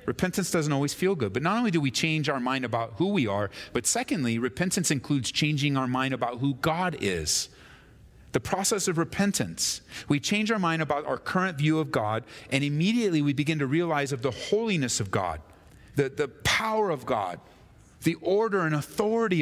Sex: male